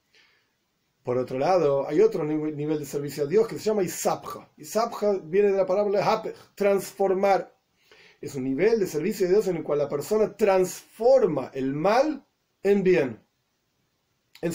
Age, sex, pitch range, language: 30-49, male, 155-210 Hz, Spanish